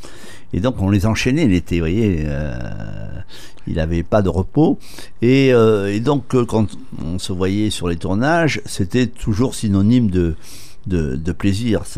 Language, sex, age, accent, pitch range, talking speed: French, male, 60-79, French, 90-115 Hz, 165 wpm